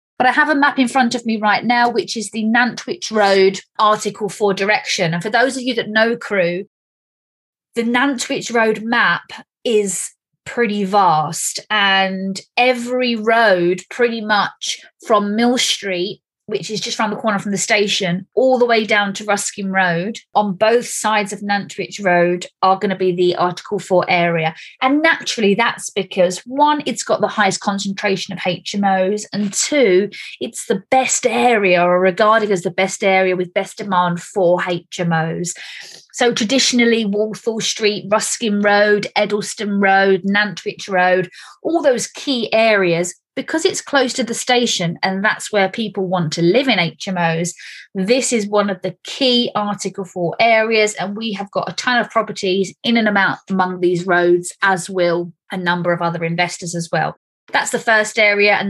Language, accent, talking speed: English, British, 170 wpm